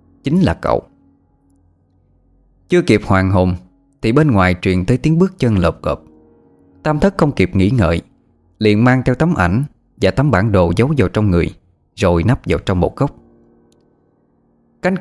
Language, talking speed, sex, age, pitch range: Vietnamese, 170 wpm, male, 20-39, 90-145 Hz